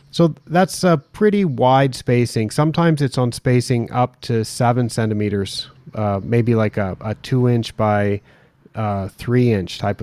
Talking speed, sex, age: 145 wpm, male, 30-49